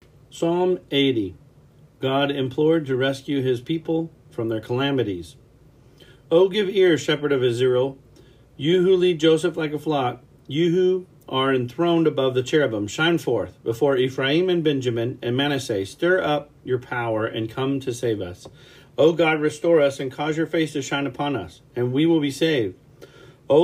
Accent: American